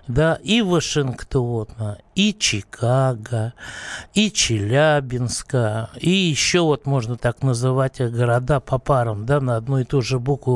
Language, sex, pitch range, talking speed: Russian, male, 120-150 Hz, 130 wpm